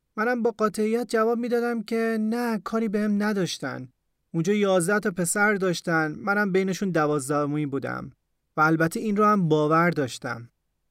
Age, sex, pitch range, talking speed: 30-49, male, 155-210 Hz, 155 wpm